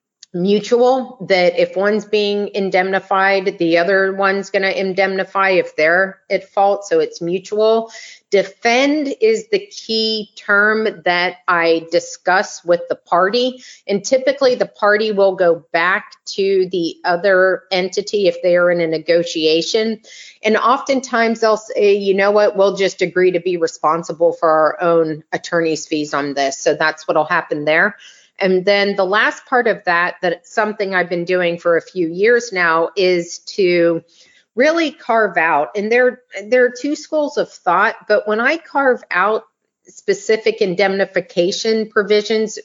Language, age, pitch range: English, 30-49, 175-225 Hz